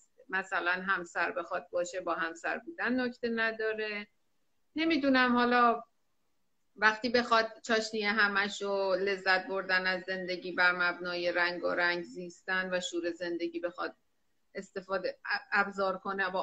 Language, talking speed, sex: Persian, 120 wpm, female